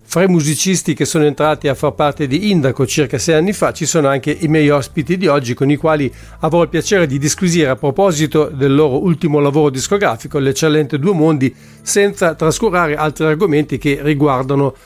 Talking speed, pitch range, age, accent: 190 wpm, 145-170 Hz, 50-69, Italian